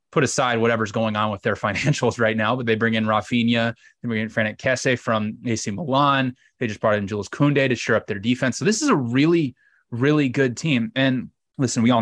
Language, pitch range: English, 110-130 Hz